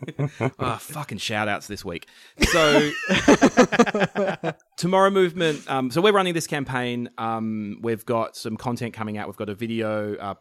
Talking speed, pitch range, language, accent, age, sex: 155 wpm, 95-125 Hz, English, Australian, 30-49, male